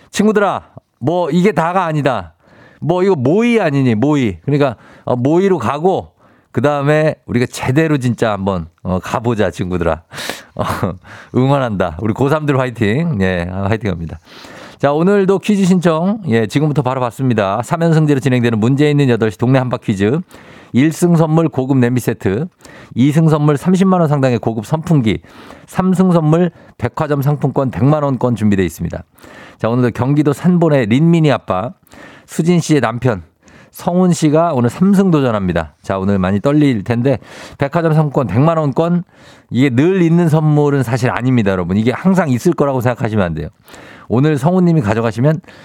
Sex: male